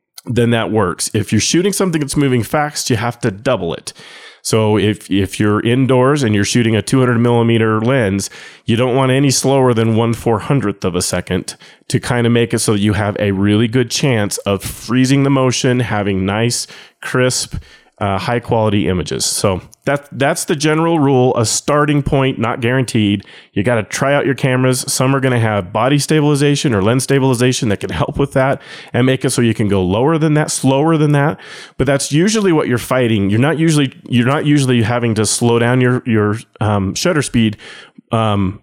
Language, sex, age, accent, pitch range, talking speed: English, male, 30-49, American, 105-135 Hz, 200 wpm